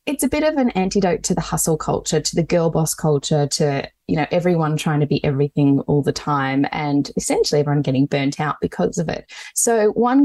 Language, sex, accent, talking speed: English, female, Australian, 215 wpm